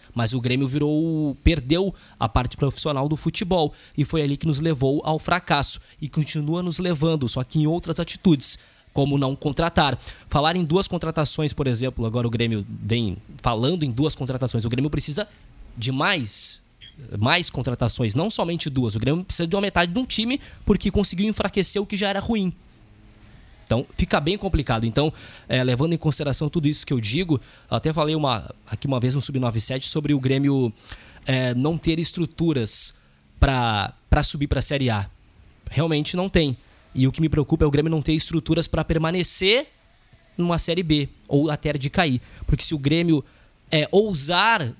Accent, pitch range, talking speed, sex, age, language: Brazilian, 125-160 Hz, 180 wpm, male, 20-39, Portuguese